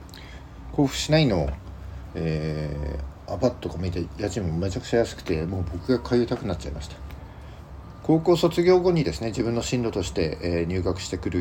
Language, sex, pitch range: Japanese, male, 85-115 Hz